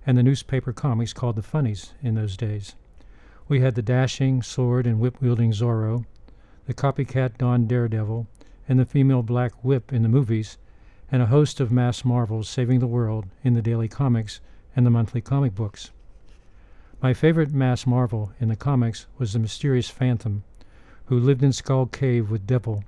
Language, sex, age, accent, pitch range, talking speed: English, male, 50-69, American, 110-130 Hz, 175 wpm